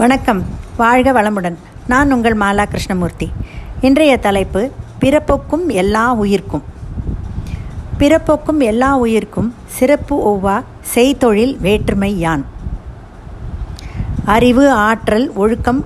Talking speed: 85 wpm